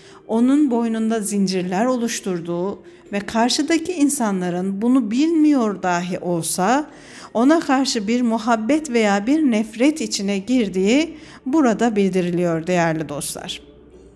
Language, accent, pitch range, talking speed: Turkish, native, 180-255 Hz, 100 wpm